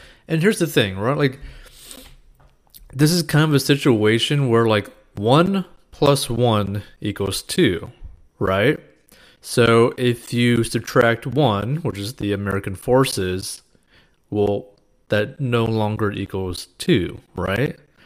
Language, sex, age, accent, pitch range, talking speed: English, male, 20-39, American, 105-135 Hz, 125 wpm